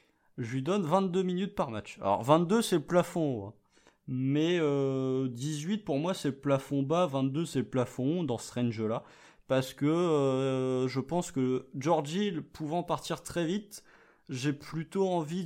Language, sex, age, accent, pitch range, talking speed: French, male, 20-39, French, 125-160 Hz, 170 wpm